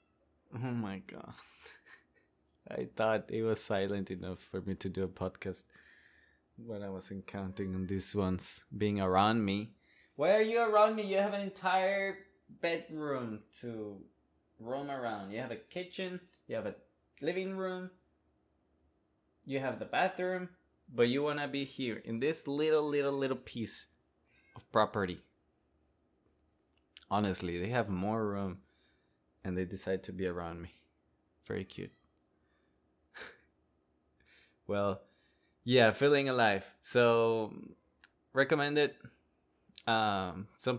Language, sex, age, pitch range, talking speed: English, male, 20-39, 95-130 Hz, 130 wpm